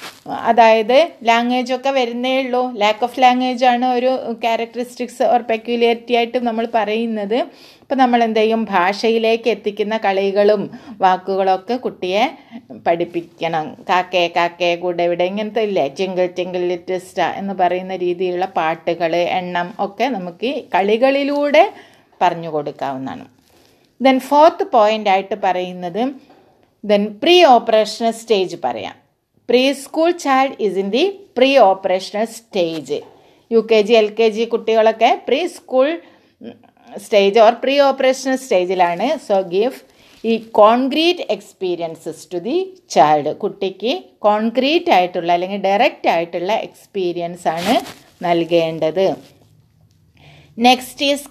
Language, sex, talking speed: Malayalam, female, 110 wpm